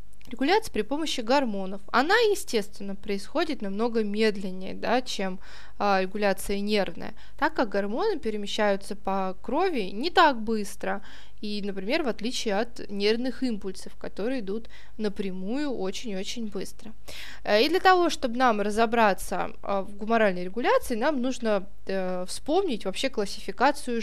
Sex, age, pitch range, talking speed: female, 20-39, 210-295 Hz, 115 wpm